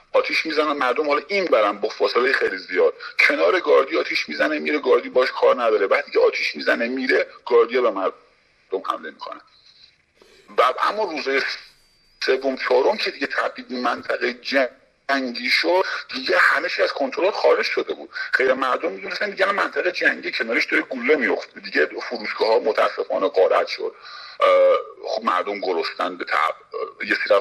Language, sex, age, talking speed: Persian, male, 50-69, 150 wpm